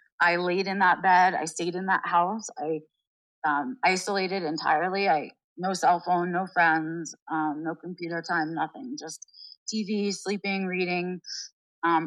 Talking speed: 150 wpm